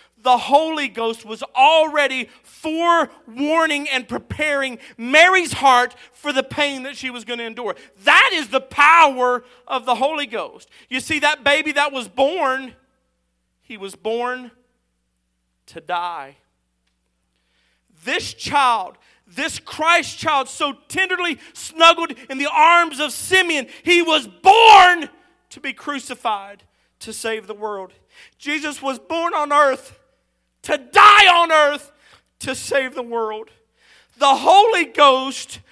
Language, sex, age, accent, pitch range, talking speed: English, male, 40-59, American, 225-300 Hz, 130 wpm